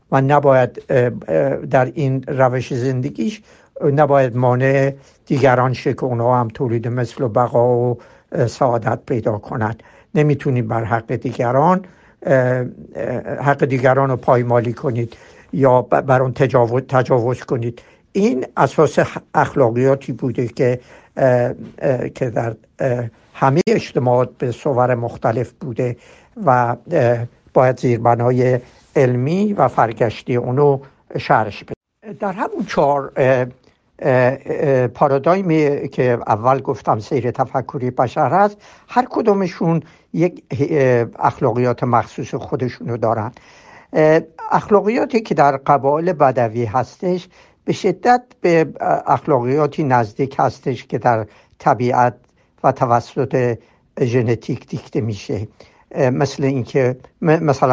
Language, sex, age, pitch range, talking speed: Persian, male, 60-79, 125-145 Hz, 105 wpm